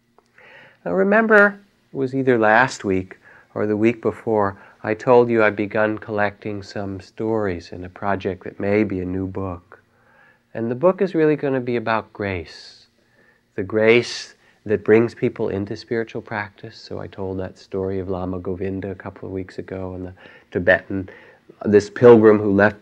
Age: 40-59